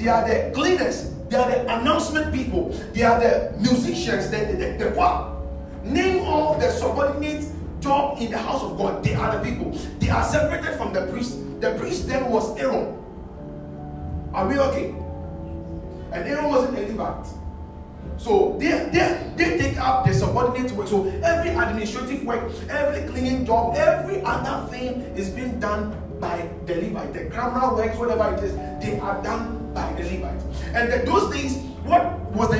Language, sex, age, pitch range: English, male, 40-59, 220-300 Hz